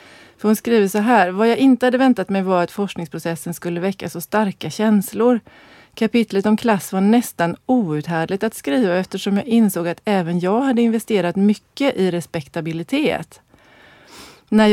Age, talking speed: 30-49, 160 wpm